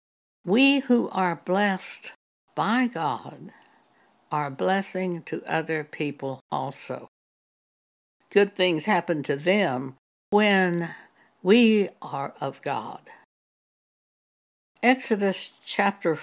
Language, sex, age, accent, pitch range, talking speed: English, female, 60-79, American, 160-220 Hz, 90 wpm